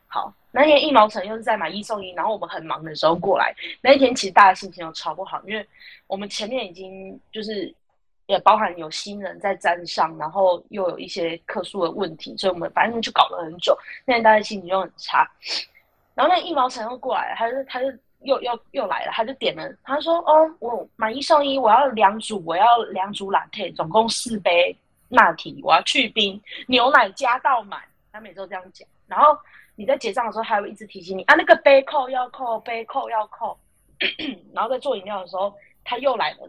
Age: 20-39